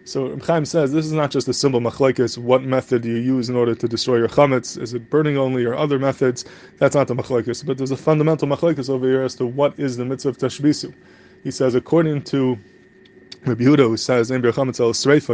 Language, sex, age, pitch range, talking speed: English, male, 20-39, 125-150 Hz, 220 wpm